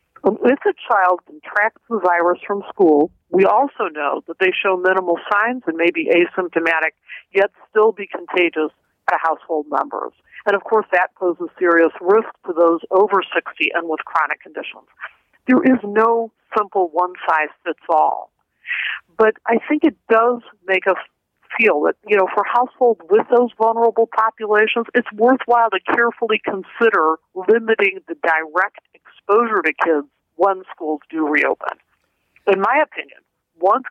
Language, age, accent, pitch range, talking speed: English, 50-69, American, 170-230 Hz, 150 wpm